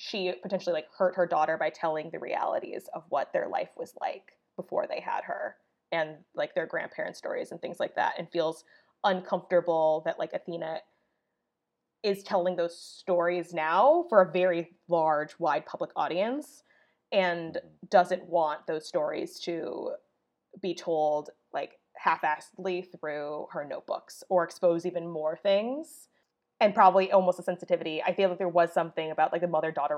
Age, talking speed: 20-39, 160 wpm